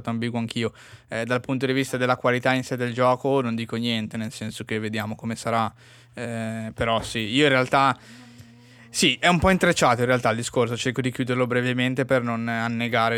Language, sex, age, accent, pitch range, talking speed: Italian, male, 20-39, native, 115-125 Hz, 200 wpm